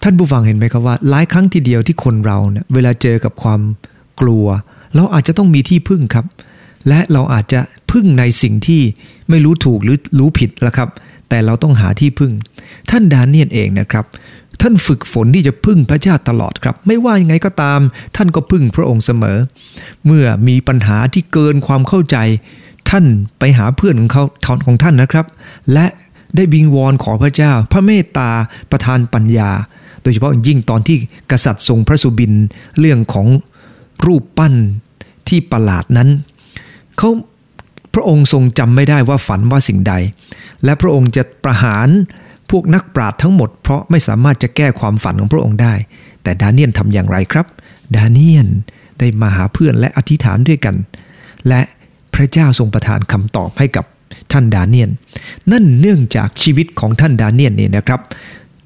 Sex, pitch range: male, 115-155 Hz